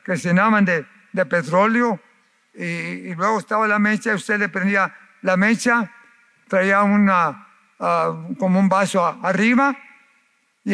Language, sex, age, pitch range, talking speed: Spanish, male, 50-69, 185-230 Hz, 140 wpm